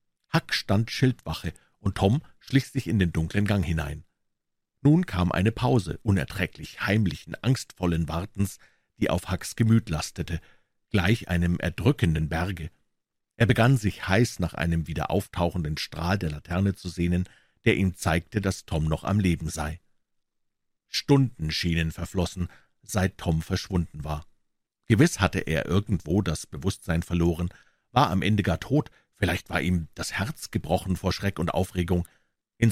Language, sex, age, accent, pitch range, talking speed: German, male, 50-69, German, 85-115 Hz, 150 wpm